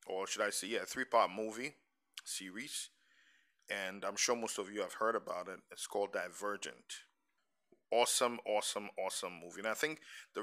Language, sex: English, male